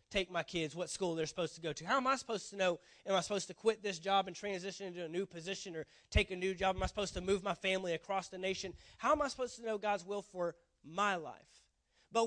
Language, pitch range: English, 165-205 Hz